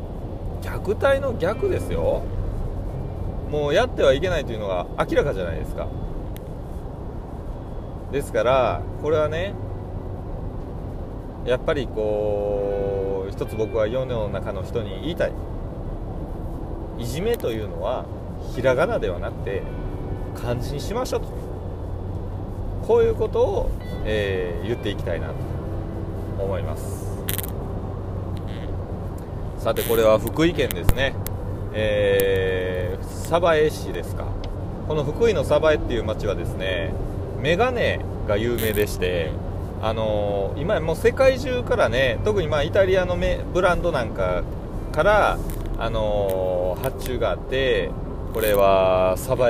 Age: 30-49